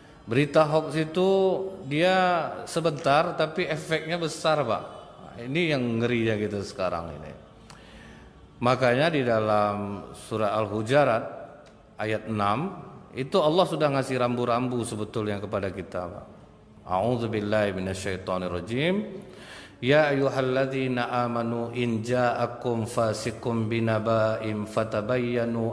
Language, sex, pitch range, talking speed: Indonesian, male, 110-150 Hz, 95 wpm